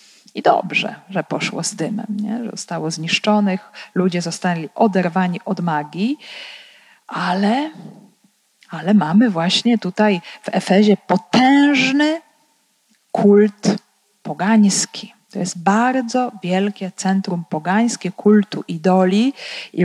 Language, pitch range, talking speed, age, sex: Polish, 185-220 Hz, 100 wpm, 40-59, female